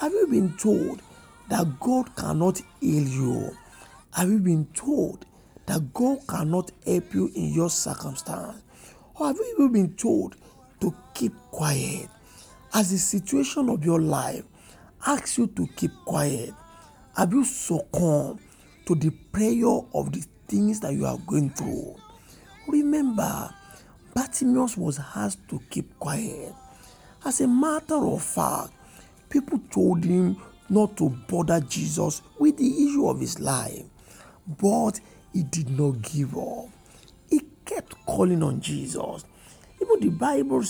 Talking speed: 135 wpm